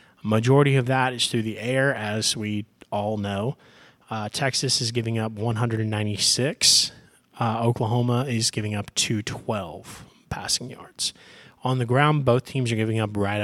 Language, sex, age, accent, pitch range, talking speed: English, male, 30-49, American, 110-135 Hz, 150 wpm